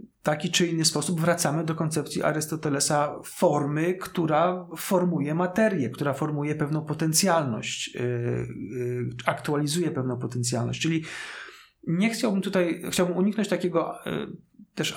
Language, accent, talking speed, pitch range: Polish, native, 110 wpm, 145-175 Hz